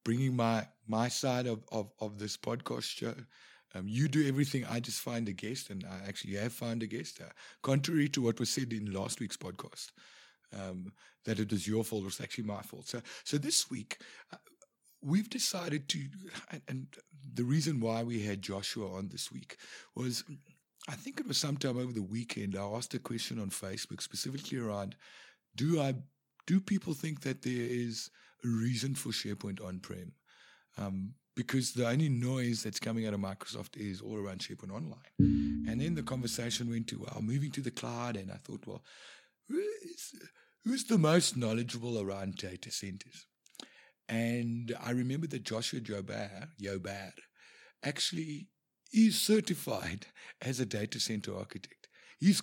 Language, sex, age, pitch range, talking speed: English, male, 60-79, 105-140 Hz, 170 wpm